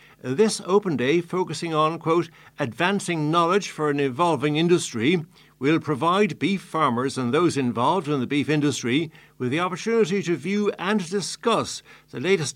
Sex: male